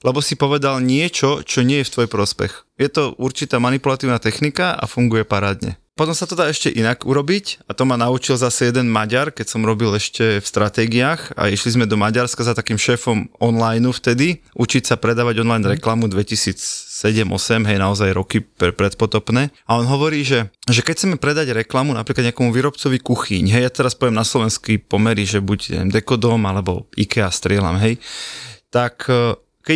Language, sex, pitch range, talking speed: Slovak, male, 115-140 Hz, 175 wpm